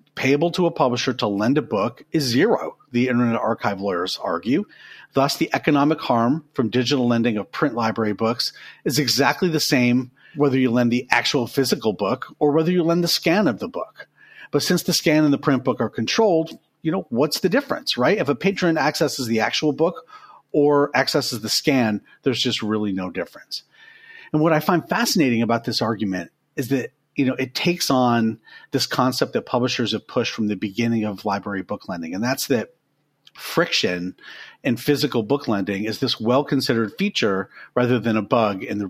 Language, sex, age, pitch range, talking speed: English, male, 40-59, 115-150 Hz, 195 wpm